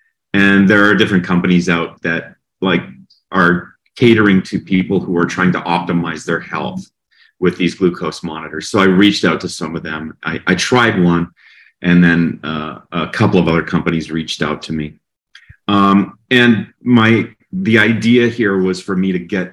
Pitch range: 80-95 Hz